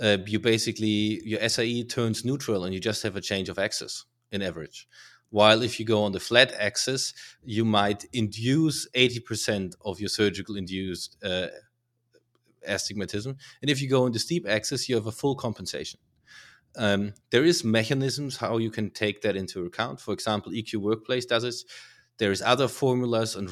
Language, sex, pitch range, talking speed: English, male, 105-125 Hz, 180 wpm